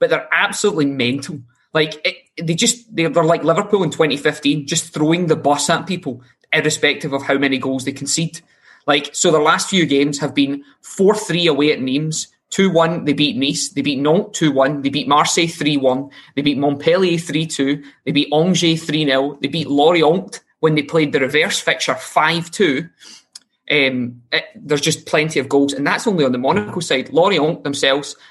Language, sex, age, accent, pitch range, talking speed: English, male, 20-39, British, 140-160 Hz, 180 wpm